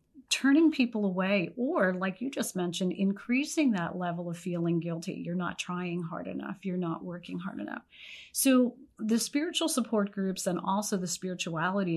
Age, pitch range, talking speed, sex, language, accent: 40-59, 185-240 Hz, 165 wpm, female, English, American